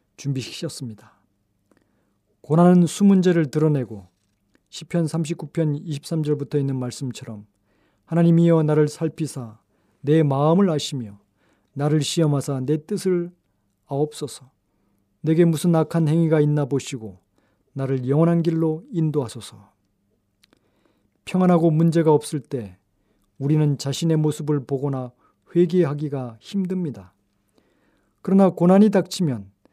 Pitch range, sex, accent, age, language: 110-170 Hz, male, native, 40-59, Korean